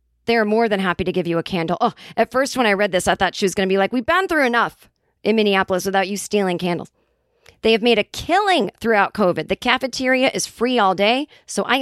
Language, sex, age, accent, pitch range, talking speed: English, female, 40-59, American, 180-260 Hz, 255 wpm